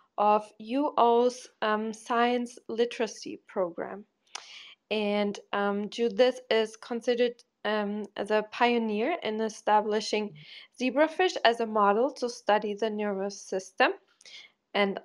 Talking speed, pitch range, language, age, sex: 105 wpm, 210-250 Hz, English, 20-39, female